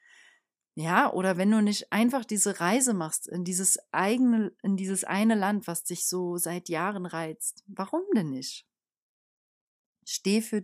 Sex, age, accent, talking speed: female, 30-49, German, 150 wpm